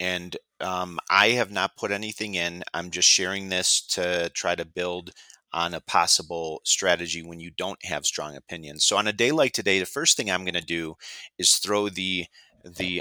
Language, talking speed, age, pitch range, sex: English, 200 wpm, 30-49, 85-105 Hz, male